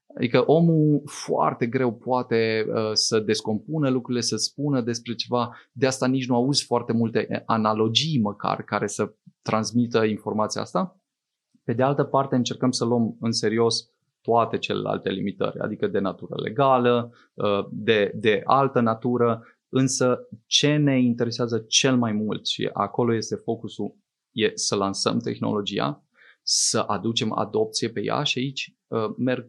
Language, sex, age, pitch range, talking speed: Romanian, male, 20-39, 110-135 Hz, 140 wpm